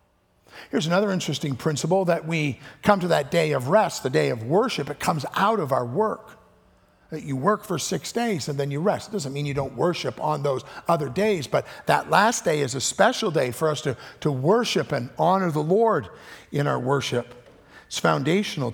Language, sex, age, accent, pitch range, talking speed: English, male, 50-69, American, 125-190 Hz, 205 wpm